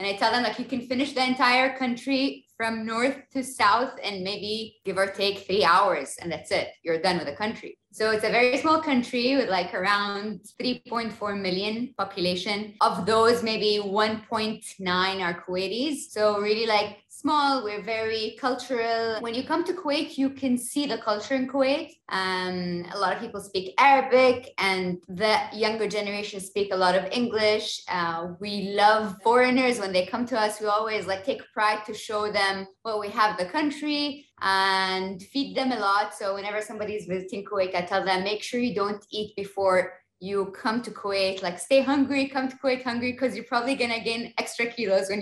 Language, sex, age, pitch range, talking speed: English, female, 20-39, 195-250 Hz, 190 wpm